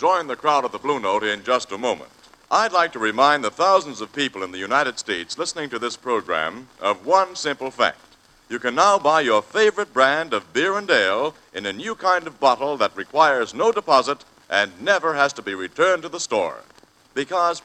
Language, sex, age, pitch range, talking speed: English, male, 60-79, 135-205 Hz, 210 wpm